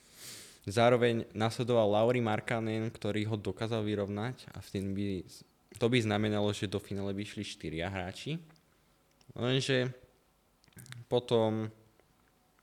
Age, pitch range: 20-39, 90-110 Hz